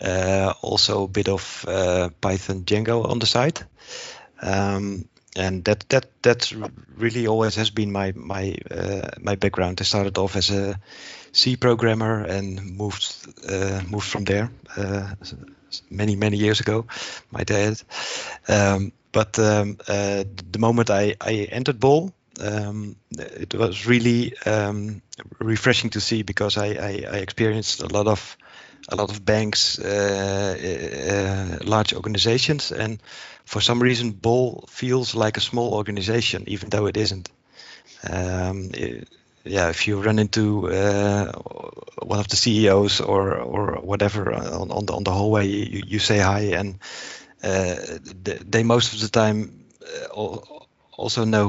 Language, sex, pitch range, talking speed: English, male, 100-115 Hz, 150 wpm